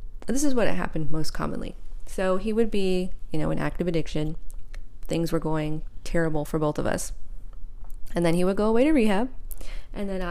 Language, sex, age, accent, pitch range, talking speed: English, female, 20-39, American, 165-235 Hz, 190 wpm